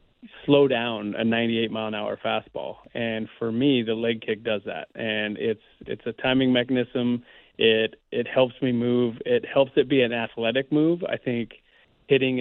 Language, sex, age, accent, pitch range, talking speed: English, male, 30-49, American, 115-125 Hz, 165 wpm